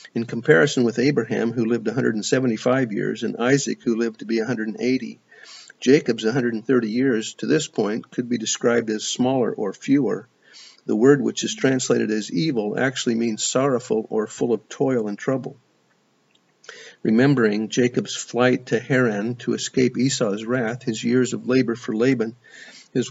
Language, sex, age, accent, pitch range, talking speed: English, male, 50-69, American, 110-125 Hz, 155 wpm